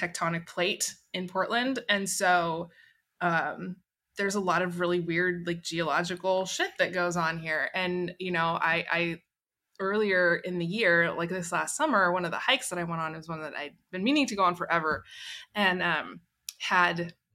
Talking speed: 185 wpm